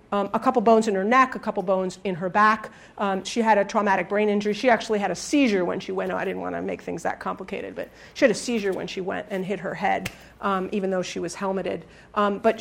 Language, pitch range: English, 205-275 Hz